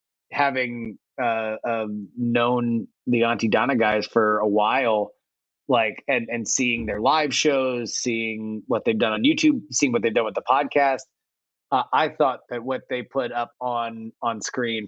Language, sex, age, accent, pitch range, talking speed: English, male, 30-49, American, 110-125 Hz, 170 wpm